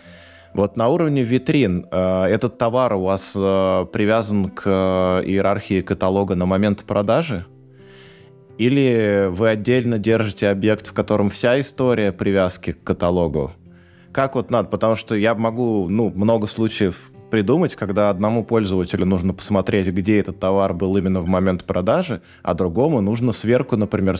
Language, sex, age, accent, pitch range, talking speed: Russian, male, 20-39, native, 95-115 Hz, 145 wpm